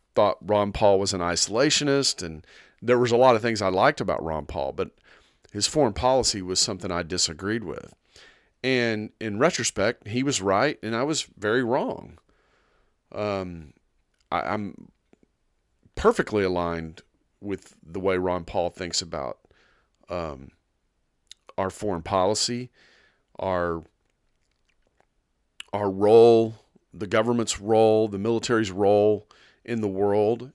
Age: 40-59